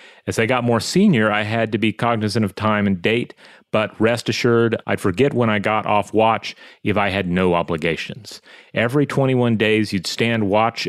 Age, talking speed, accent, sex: 30-49, 195 wpm, American, male